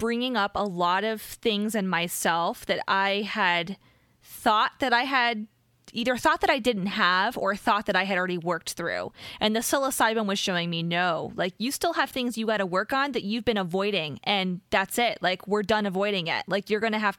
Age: 20-39